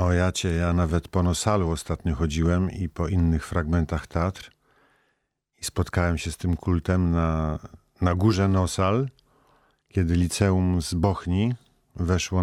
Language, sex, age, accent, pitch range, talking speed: Polish, male, 50-69, native, 80-95 Hz, 130 wpm